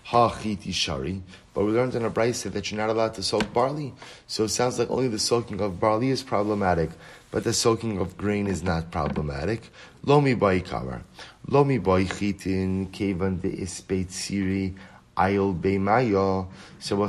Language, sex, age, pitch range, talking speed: English, male, 30-49, 95-115 Hz, 155 wpm